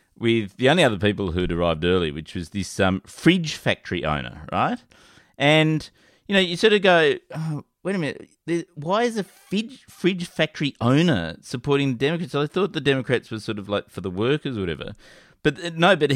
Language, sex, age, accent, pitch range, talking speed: English, male, 30-49, Australian, 100-165 Hz, 195 wpm